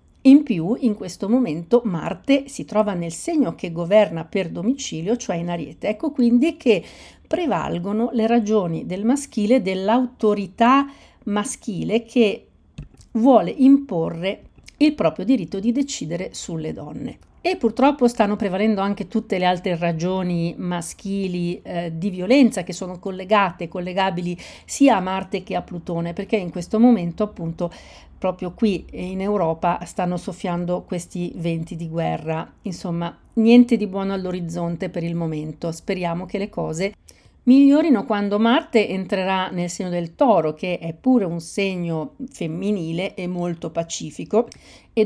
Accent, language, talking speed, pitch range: native, Italian, 140 wpm, 175-225 Hz